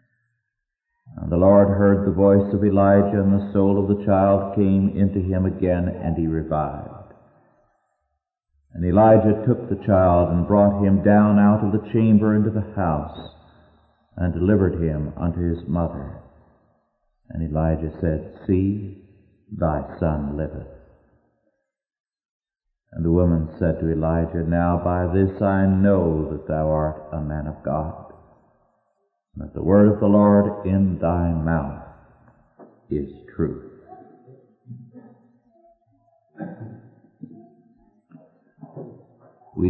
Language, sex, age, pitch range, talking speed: English, male, 60-79, 80-110 Hz, 120 wpm